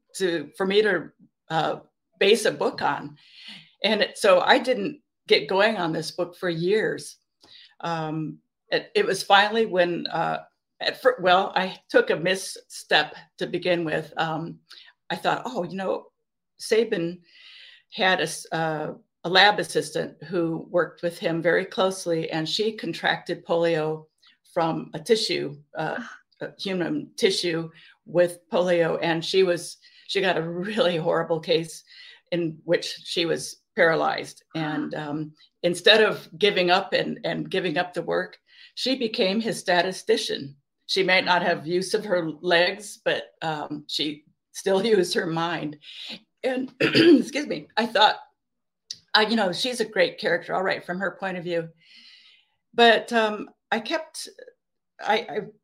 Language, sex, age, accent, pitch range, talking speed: English, female, 50-69, American, 170-235 Hz, 150 wpm